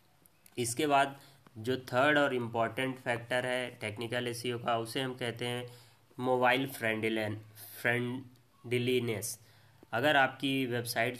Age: 20-39